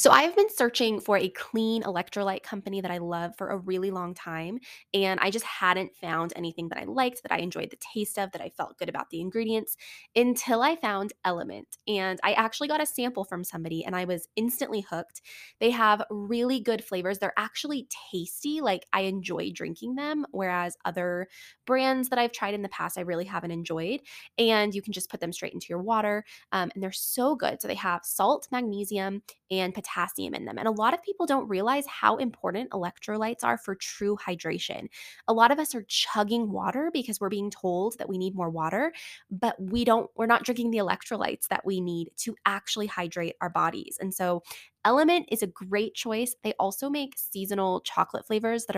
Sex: female